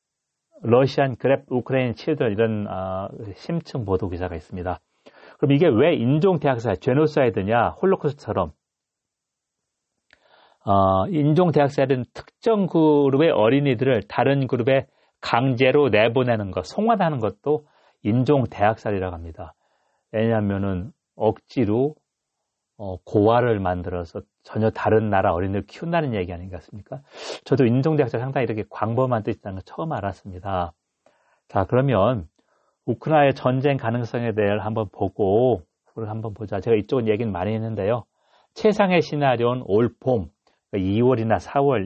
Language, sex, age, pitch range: Korean, male, 40-59, 100-135 Hz